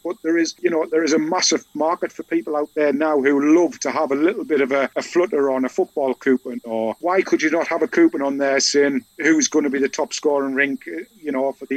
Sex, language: male, English